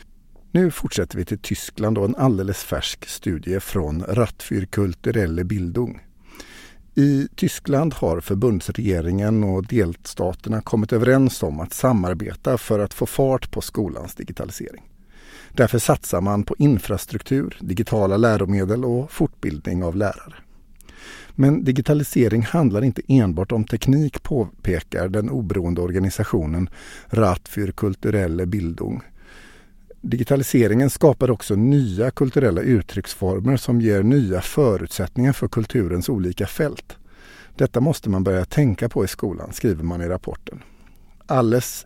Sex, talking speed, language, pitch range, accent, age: male, 120 wpm, Swedish, 95-125 Hz, native, 50-69